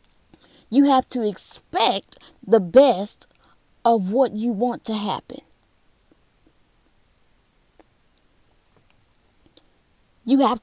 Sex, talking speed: female, 80 wpm